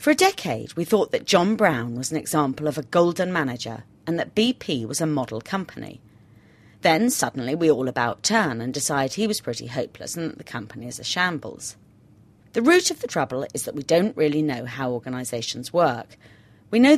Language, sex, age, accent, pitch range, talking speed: English, female, 30-49, British, 125-180 Hz, 200 wpm